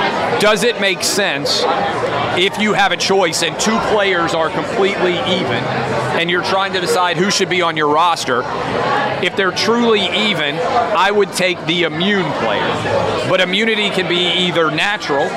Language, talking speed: English, 165 wpm